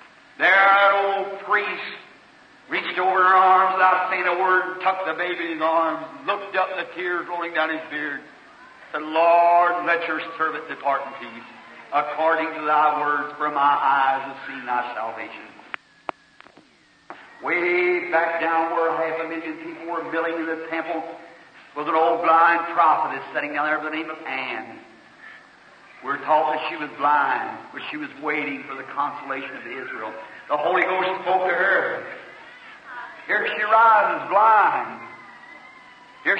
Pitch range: 155-185 Hz